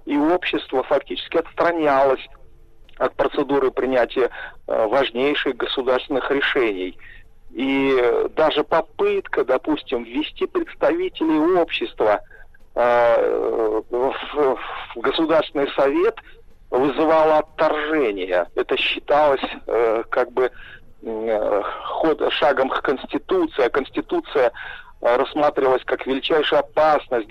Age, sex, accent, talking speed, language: 50-69, male, native, 75 wpm, Russian